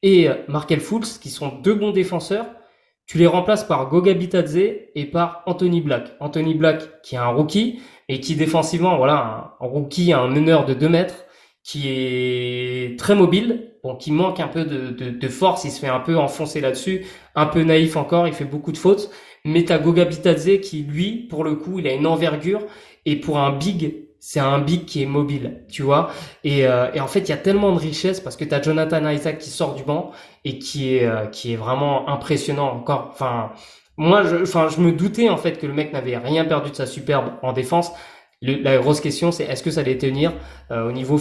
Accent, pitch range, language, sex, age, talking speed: French, 140-175 Hz, French, male, 20-39, 220 wpm